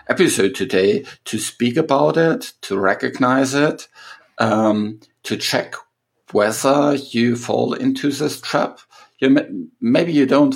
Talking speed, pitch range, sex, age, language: 130 wpm, 100-135 Hz, male, 50-69, English